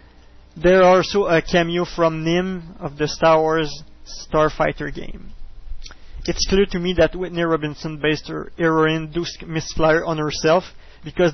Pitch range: 155-170 Hz